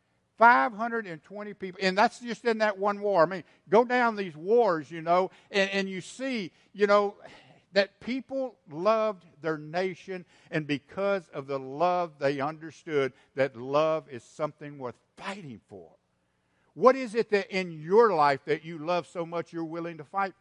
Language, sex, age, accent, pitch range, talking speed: English, male, 60-79, American, 125-190 Hz, 170 wpm